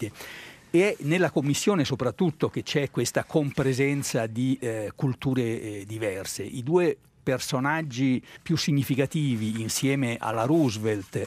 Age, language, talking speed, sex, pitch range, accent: 60-79, Italian, 110 wpm, male, 120-155 Hz, native